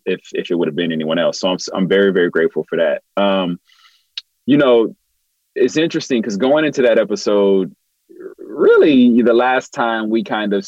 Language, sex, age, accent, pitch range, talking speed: English, male, 30-49, American, 105-130 Hz, 185 wpm